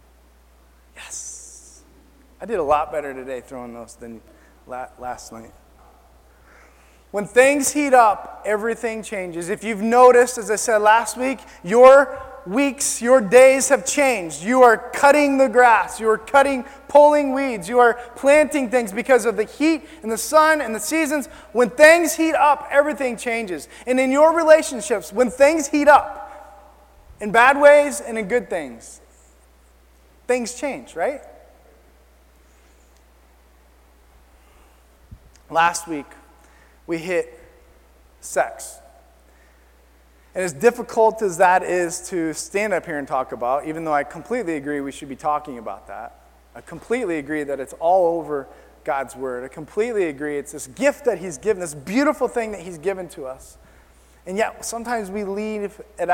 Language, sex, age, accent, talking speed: English, male, 20-39, American, 150 wpm